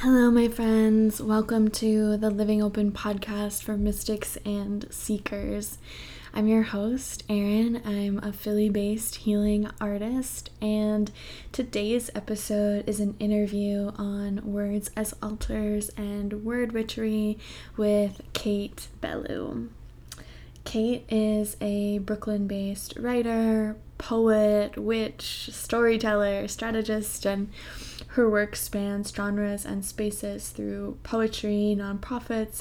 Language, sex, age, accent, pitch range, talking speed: English, female, 10-29, American, 200-215 Hz, 110 wpm